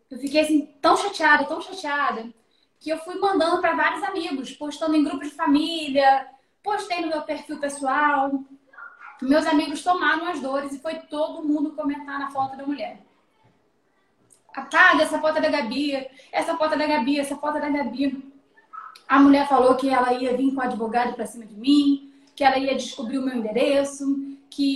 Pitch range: 260-305 Hz